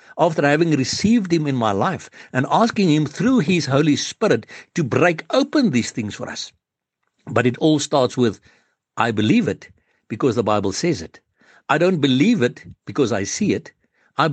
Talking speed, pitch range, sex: 180 wpm, 120-175 Hz, male